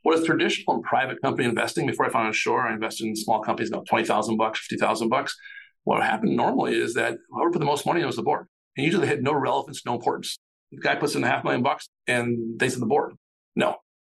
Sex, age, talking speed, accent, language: male, 50-69, 250 wpm, American, English